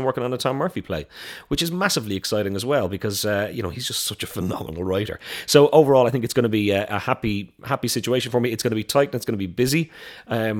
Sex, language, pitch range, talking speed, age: male, English, 95-125 Hz, 280 wpm, 30-49